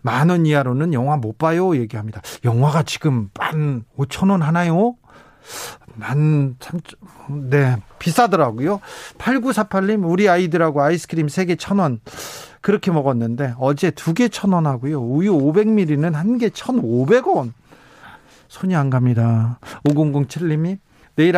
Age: 40-59